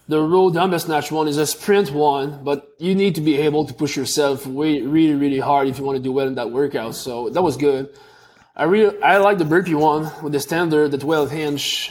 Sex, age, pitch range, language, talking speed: male, 20-39, 140-160 Hz, English, 240 wpm